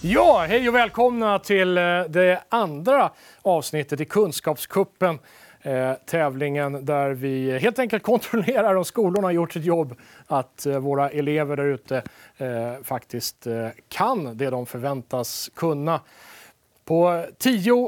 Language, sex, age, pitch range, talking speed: Swedish, male, 30-49, 140-195 Hz, 110 wpm